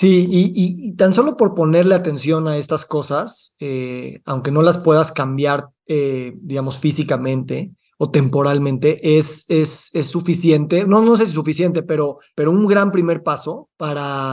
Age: 30-49